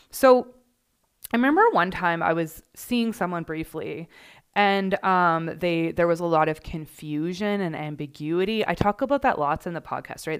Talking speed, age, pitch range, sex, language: 175 wpm, 20-39, 160-205 Hz, female, English